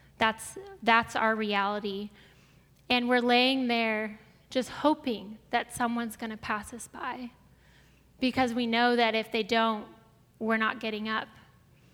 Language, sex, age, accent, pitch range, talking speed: English, female, 10-29, American, 220-245 Hz, 140 wpm